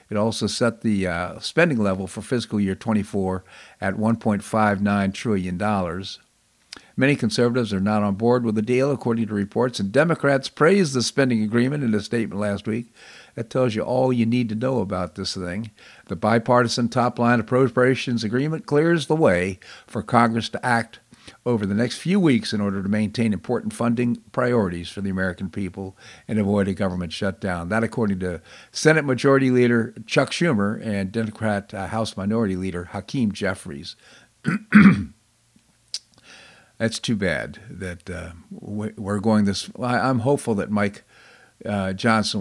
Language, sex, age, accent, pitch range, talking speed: English, male, 50-69, American, 95-120 Hz, 155 wpm